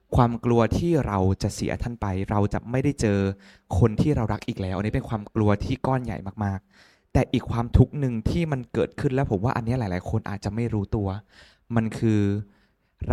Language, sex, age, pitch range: Thai, male, 20-39, 100-130 Hz